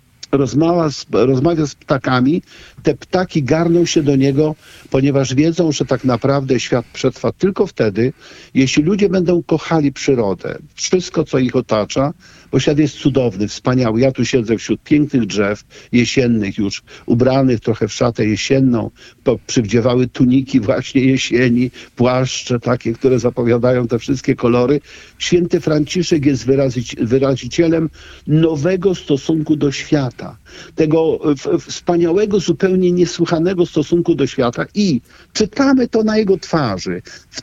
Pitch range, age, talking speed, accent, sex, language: 130-175 Hz, 50-69, 130 wpm, native, male, Polish